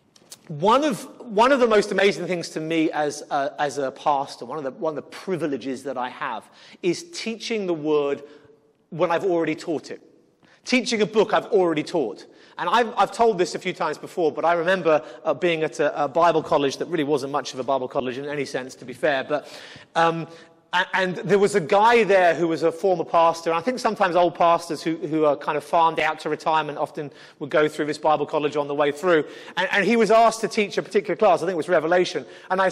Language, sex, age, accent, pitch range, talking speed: English, male, 30-49, British, 155-215 Hz, 235 wpm